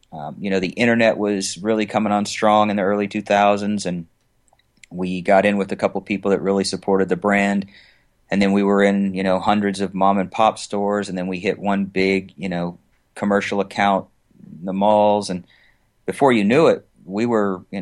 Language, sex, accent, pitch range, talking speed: English, male, American, 95-105 Hz, 205 wpm